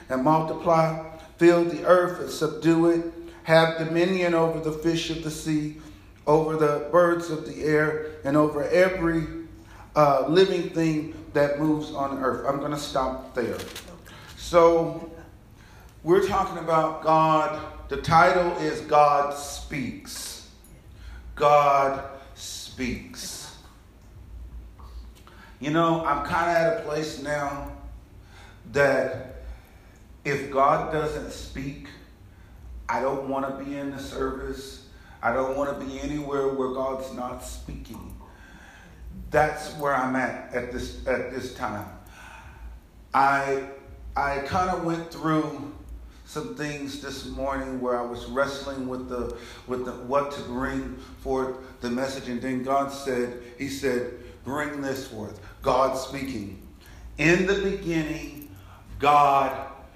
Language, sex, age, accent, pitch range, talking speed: English, male, 40-59, American, 125-155 Hz, 130 wpm